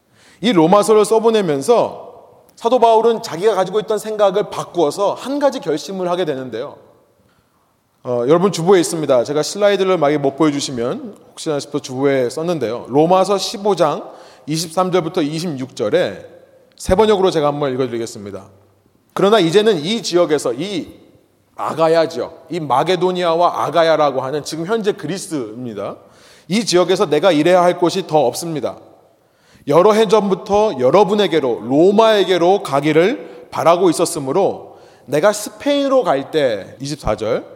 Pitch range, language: 150-215 Hz, Korean